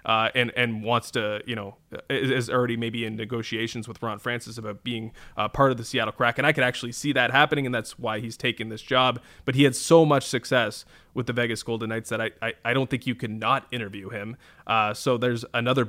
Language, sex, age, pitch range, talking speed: English, male, 20-39, 115-130 Hz, 240 wpm